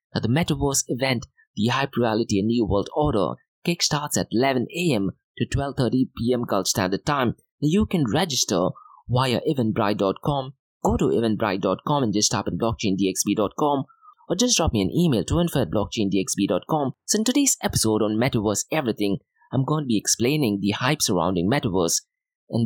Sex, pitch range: male, 110-155 Hz